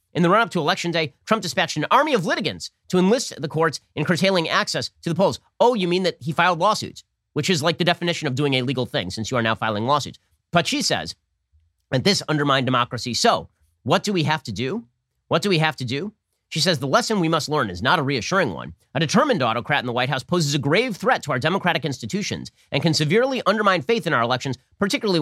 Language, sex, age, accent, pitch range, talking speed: English, male, 30-49, American, 125-185 Hz, 240 wpm